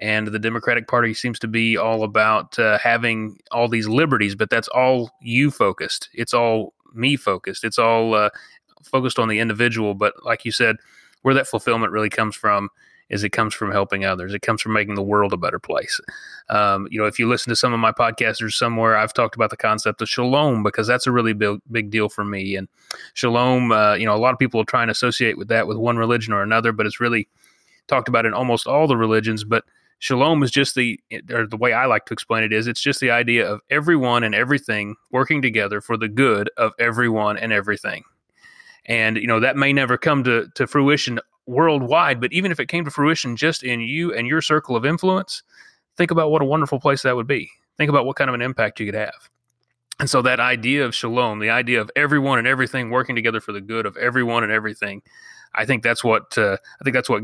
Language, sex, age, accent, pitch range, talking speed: English, male, 30-49, American, 110-130 Hz, 230 wpm